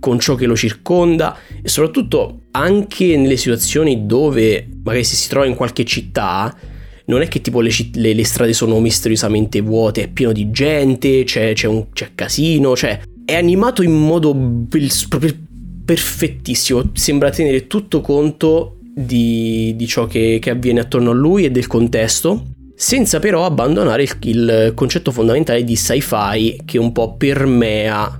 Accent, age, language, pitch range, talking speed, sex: native, 20-39, Italian, 110-130 Hz, 160 wpm, male